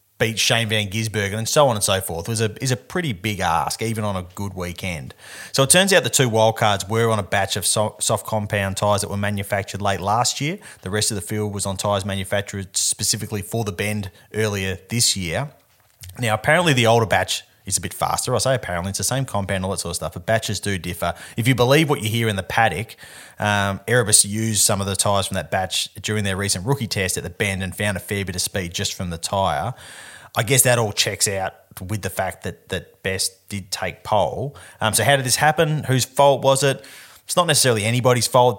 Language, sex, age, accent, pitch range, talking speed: English, male, 30-49, Australian, 100-115 Hz, 235 wpm